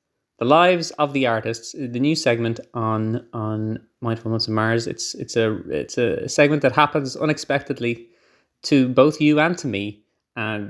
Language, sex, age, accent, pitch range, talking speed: English, male, 20-39, Irish, 110-140 Hz, 165 wpm